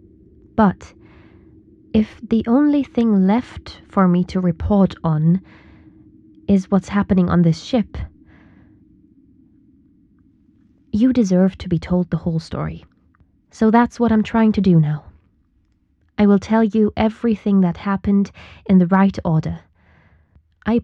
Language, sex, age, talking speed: English, female, 20-39, 130 wpm